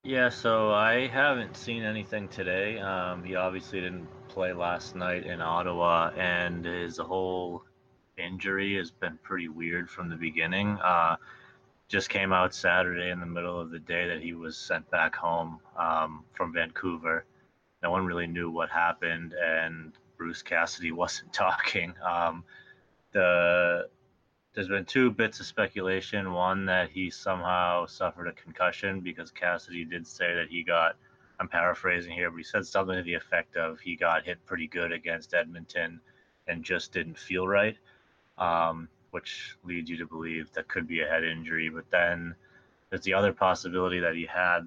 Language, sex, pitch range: English, male, 85-95 Hz